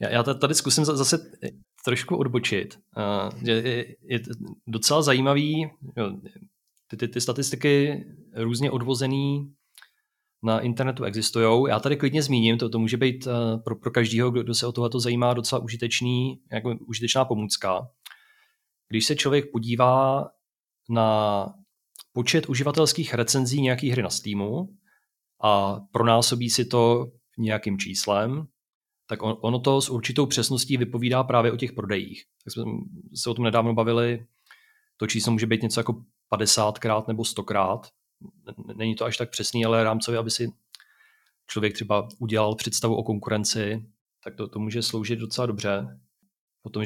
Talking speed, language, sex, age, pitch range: 140 wpm, Czech, male, 30-49, 110-130 Hz